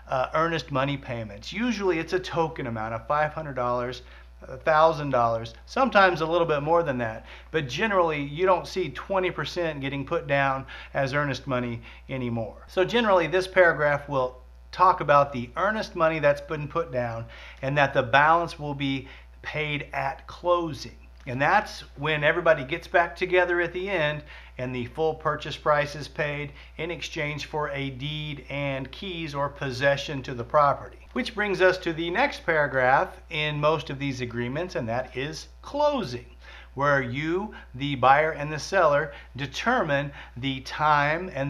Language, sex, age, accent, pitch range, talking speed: English, male, 40-59, American, 135-170 Hz, 160 wpm